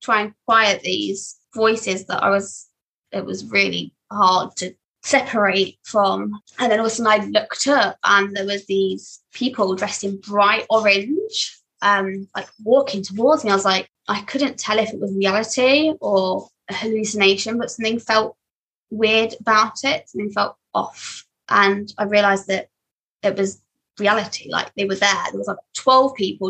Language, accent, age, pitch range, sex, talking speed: English, British, 20-39, 195-230 Hz, female, 170 wpm